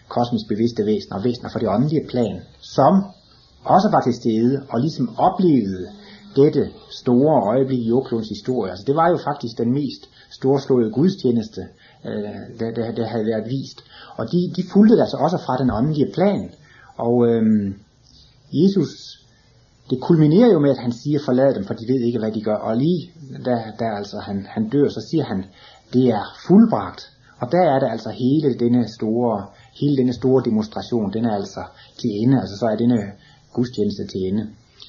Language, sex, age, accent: Danish, male, 30-49, native